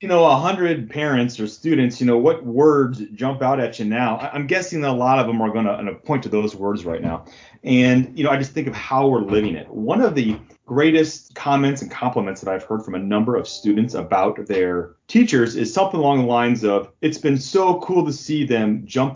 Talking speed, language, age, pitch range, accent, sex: 235 wpm, English, 30-49, 110-150 Hz, American, male